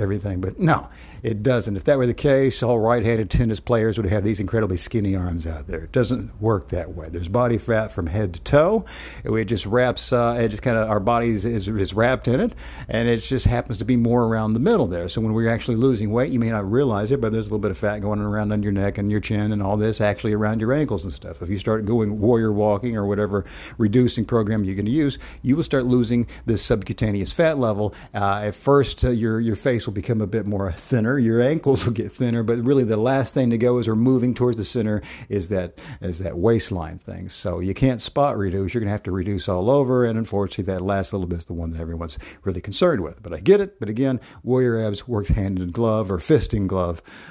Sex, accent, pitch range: male, American, 100-125 Hz